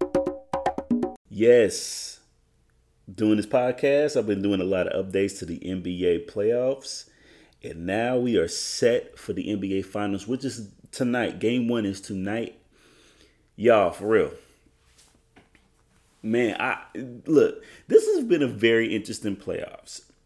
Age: 30-49